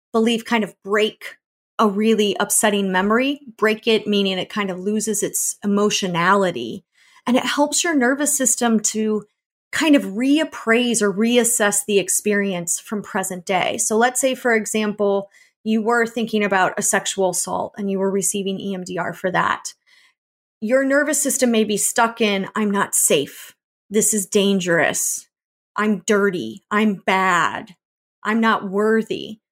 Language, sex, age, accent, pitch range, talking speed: English, female, 30-49, American, 200-245 Hz, 150 wpm